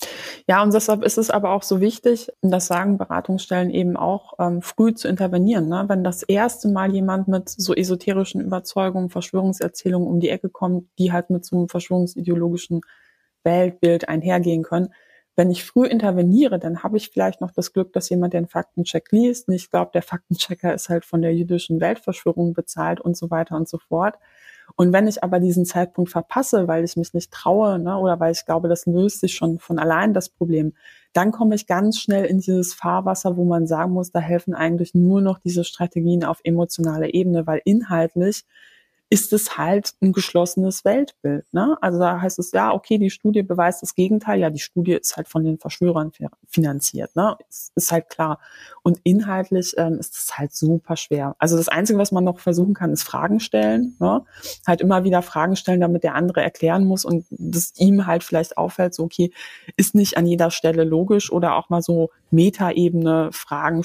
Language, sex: German, female